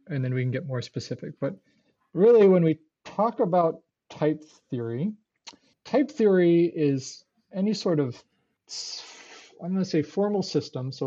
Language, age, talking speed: English, 40-59, 150 wpm